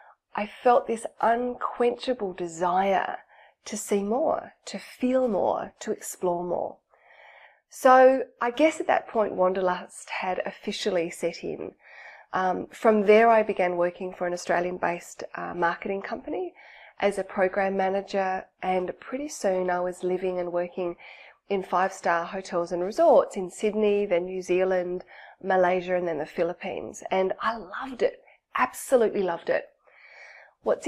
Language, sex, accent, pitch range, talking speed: English, female, Australian, 180-245 Hz, 145 wpm